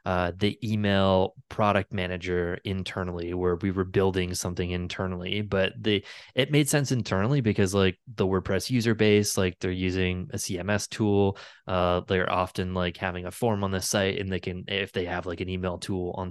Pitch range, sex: 95-110 Hz, male